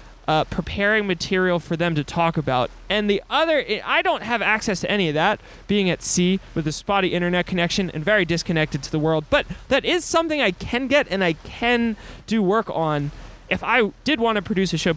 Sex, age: male, 20-39